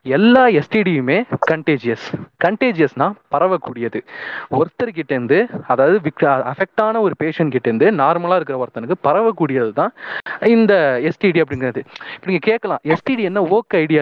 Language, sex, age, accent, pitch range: Tamil, male, 20-39, native, 135-195 Hz